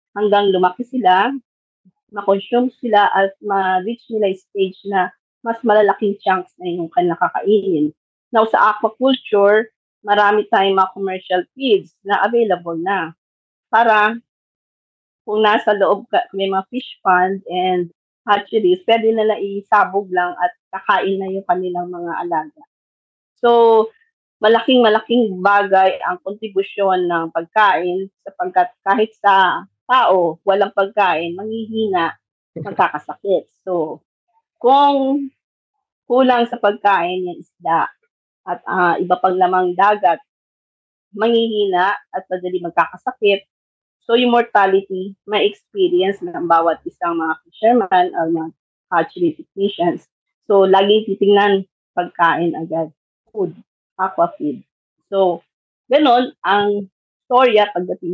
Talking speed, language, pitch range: 110 wpm, Filipino, 185-230 Hz